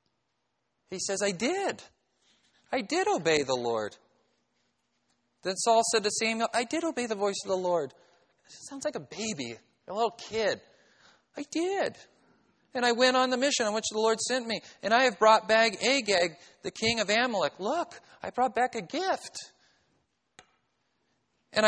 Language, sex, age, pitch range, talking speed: English, male, 40-59, 150-220 Hz, 165 wpm